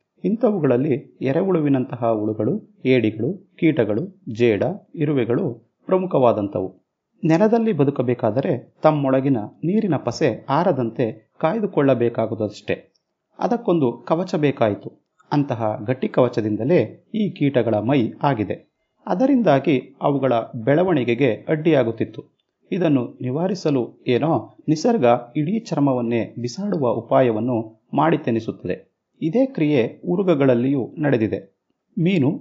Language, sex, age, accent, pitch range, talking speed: Kannada, male, 30-49, native, 120-165 Hz, 80 wpm